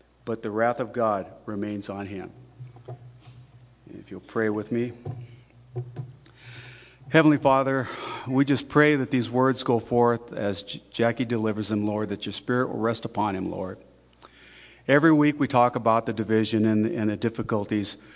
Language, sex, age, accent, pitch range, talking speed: English, male, 40-59, American, 110-135 Hz, 150 wpm